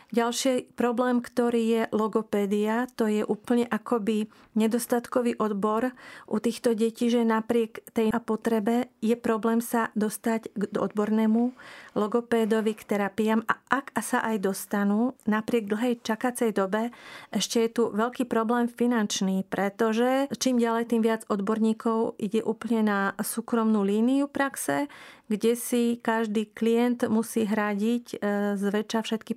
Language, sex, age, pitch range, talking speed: Slovak, female, 40-59, 215-240 Hz, 125 wpm